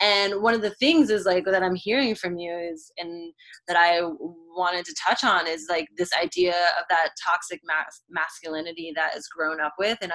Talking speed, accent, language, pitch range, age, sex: 205 wpm, American, English, 165-190 Hz, 20-39, female